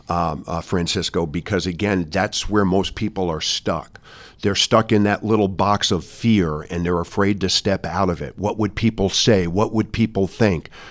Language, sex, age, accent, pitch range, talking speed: English, male, 50-69, American, 95-115 Hz, 195 wpm